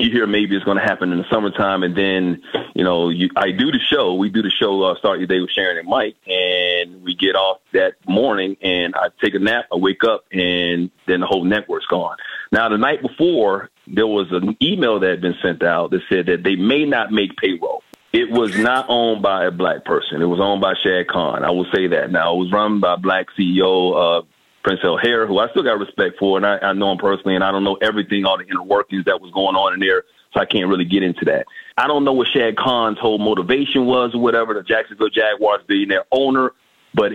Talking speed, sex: 245 wpm, male